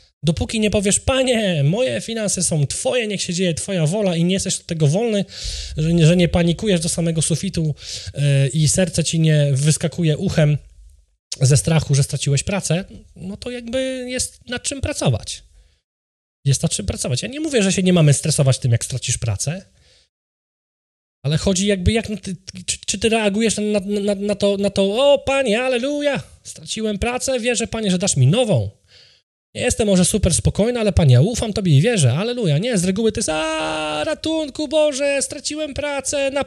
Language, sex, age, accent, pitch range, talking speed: Polish, male, 20-39, native, 130-200 Hz, 185 wpm